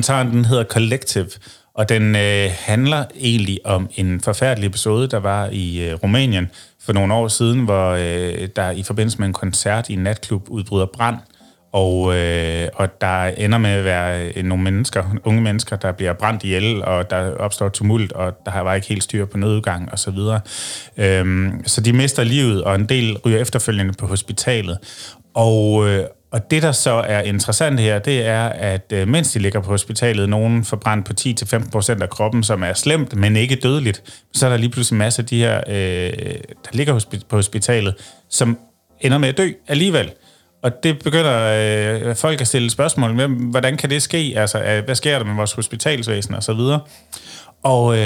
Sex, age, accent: male, 30-49, native